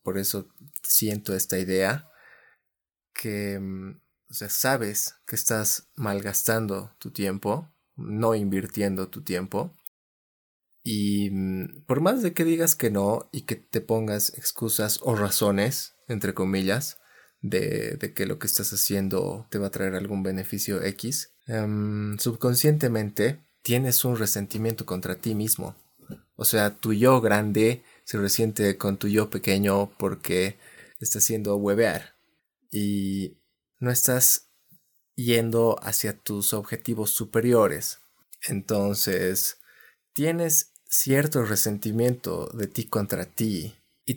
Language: Spanish